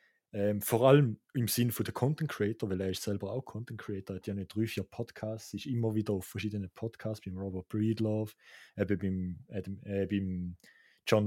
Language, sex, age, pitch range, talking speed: English, male, 30-49, 100-125 Hz, 195 wpm